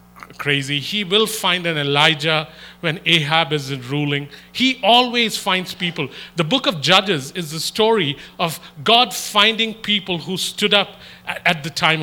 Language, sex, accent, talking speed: English, male, Indian, 160 wpm